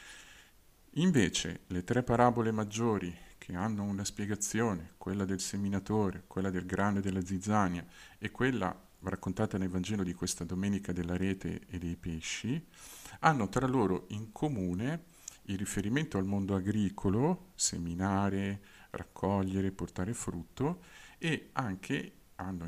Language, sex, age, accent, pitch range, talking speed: Italian, male, 50-69, native, 90-105 Hz, 125 wpm